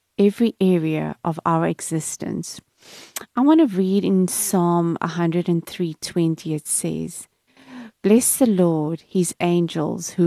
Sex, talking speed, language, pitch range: female, 125 wpm, English, 170-225 Hz